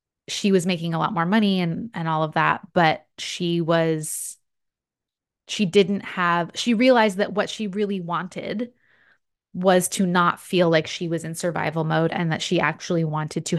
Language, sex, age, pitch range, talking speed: English, female, 20-39, 170-205 Hz, 180 wpm